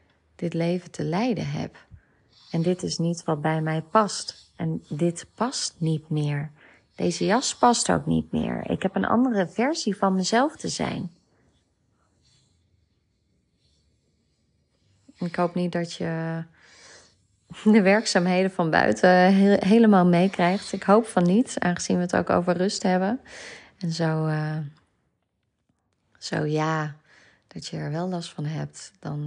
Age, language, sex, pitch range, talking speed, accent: 30-49, Dutch, female, 155-195 Hz, 140 wpm, Dutch